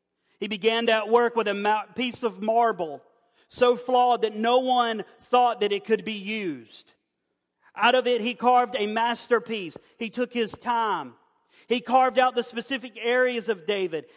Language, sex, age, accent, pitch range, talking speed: English, male, 40-59, American, 220-255 Hz, 165 wpm